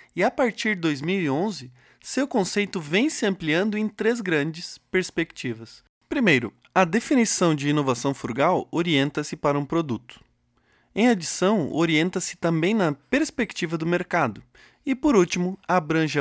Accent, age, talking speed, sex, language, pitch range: Brazilian, 20-39, 135 wpm, male, Portuguese, 145-205 Hz